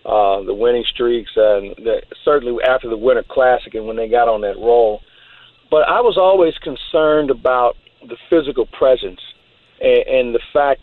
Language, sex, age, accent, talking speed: English, male, 50-69, American, 170 wpm